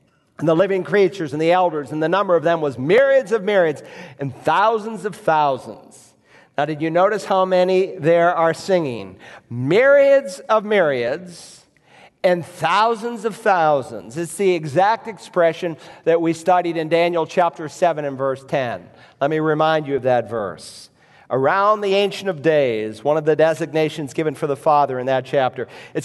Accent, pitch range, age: American, 150-190 Hz, 50-69